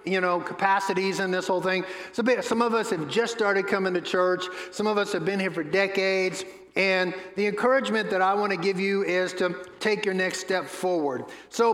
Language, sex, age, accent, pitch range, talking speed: English, male, 50-69, American, 180-215 Hz, 215 wpm